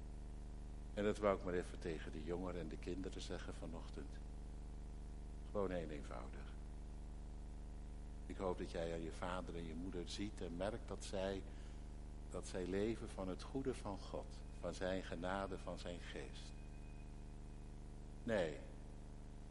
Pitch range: 70-100 Hz